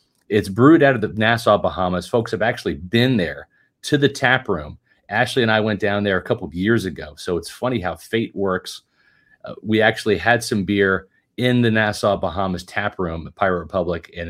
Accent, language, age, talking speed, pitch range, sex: American, English, 40-59, 205 wpm, 90-115 Hz, male